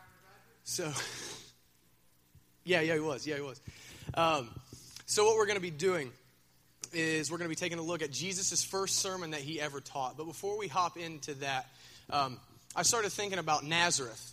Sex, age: male, 30-49